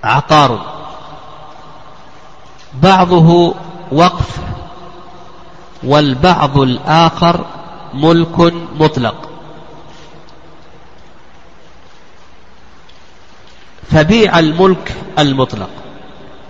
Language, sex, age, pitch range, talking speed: Arabic, male, 50-69, 140-180 Hz, 35 wpm